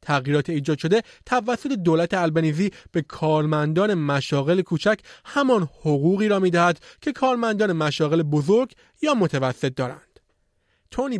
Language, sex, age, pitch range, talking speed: Persian, male, 30-49, 155-205 Hz, 125 wpm